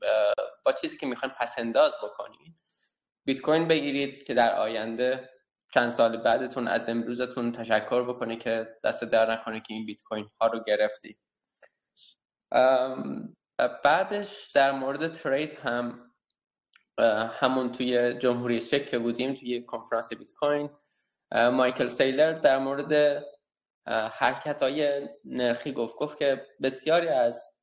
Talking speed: 115 wpm